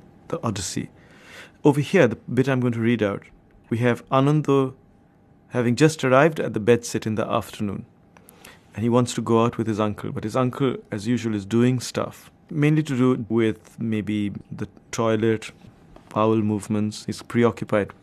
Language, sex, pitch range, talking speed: English, male, 105-125 Hz, 170 wpm